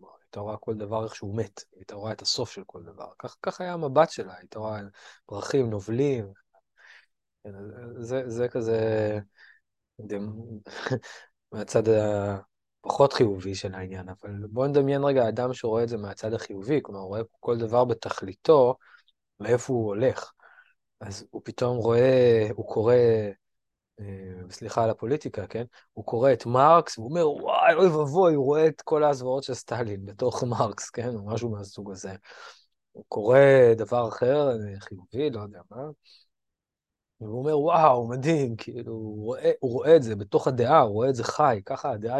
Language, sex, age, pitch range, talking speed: Hebrew, male, 20-39, 105-130 Hz, 160 wpm